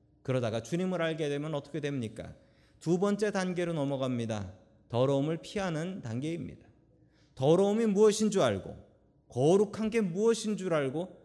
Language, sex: Korean, male